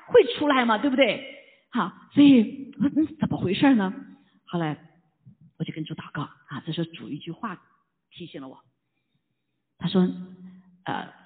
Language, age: Chinese, 40-59